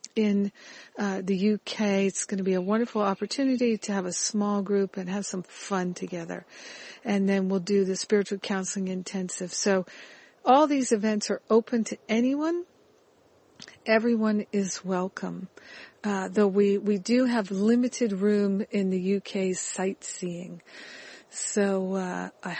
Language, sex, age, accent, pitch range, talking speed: English, female, 50-69, American, 190-220 Hz, 145 wpm